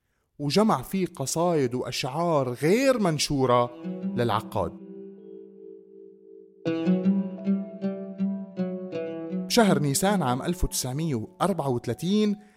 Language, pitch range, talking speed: Arabic, 120-185 Hz, 55 wpm